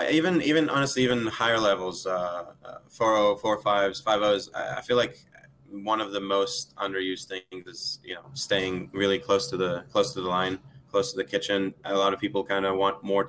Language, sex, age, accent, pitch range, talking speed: English, male, 20-39, American, 95-110 Hz, 205 wpm